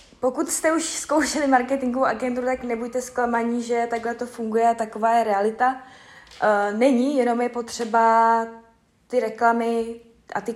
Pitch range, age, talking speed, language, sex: 205-240 Hz, 20-39, 135 wpm, Czech, female